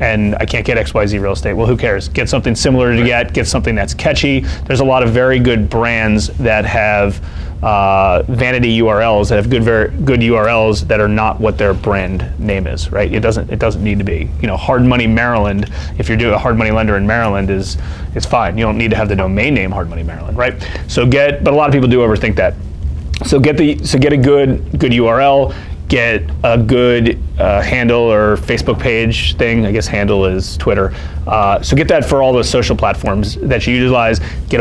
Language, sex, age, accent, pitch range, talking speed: English, male, 30-49, American, 95-125 Hz, 220 wpm